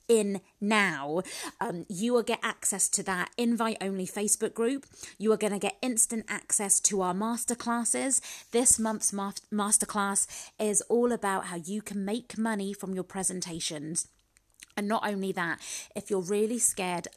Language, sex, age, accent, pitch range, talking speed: English, female, 30-49, British, 190-235 Hz, 155 wpm